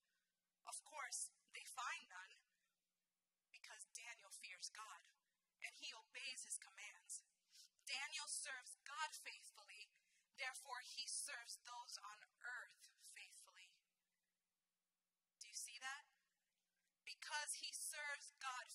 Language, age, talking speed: English, 30-49, 105 wpm